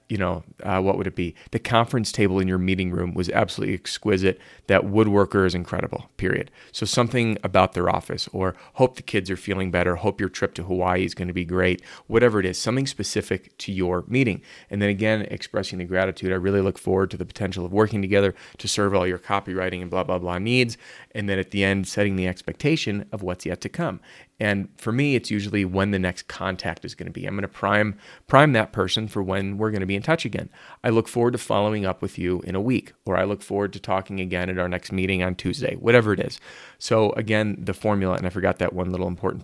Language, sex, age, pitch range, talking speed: English, male, 30-49, 95-110 Hz, 240 wpm